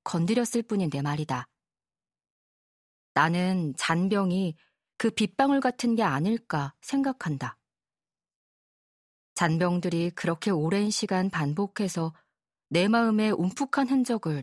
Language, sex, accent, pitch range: Korean, female, native, 160-225 Hz